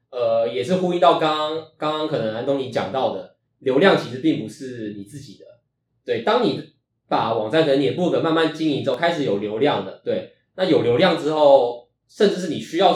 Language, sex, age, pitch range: Chinese, male, 20-39, 120-160 Hz